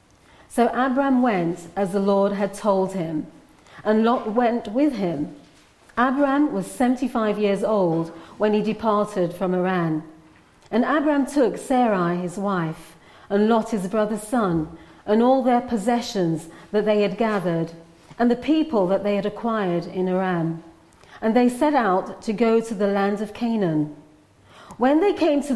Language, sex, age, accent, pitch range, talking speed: English, female, 40-59, British, 175-240 Hz, 155 wpm